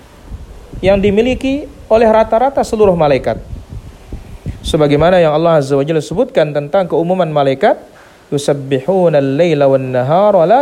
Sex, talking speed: male, 125 wpm